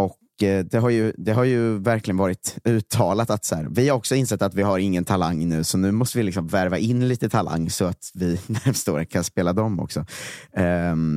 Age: 30-49